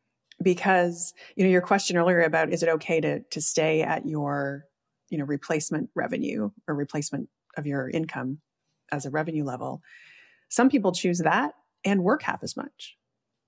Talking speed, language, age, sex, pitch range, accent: 165 wpm, English, 30-49, female, 150-185 Hz, American